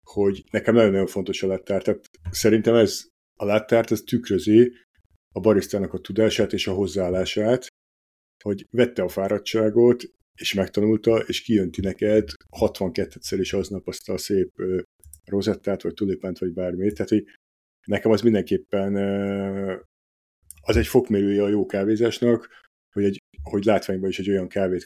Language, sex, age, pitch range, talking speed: Hungarian, male, 50-69, 95-110 Hz, 140 wpm